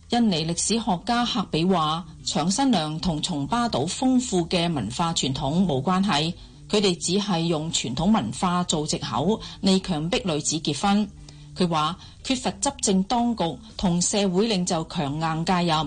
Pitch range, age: 160-210 Hz, 40-59